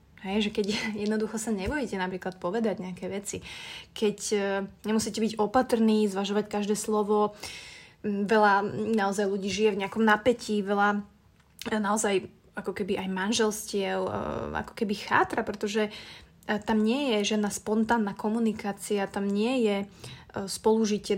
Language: Slovak